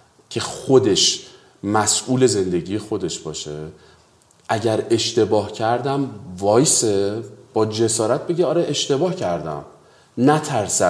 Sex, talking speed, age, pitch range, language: male, 95 wpm, 40-59, 95-130 Hz, Persian